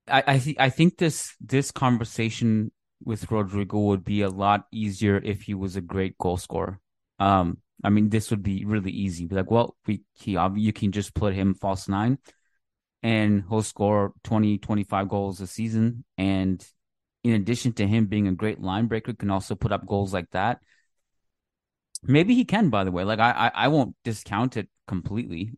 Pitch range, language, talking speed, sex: 95-115 Hz, English, 195 wpm, male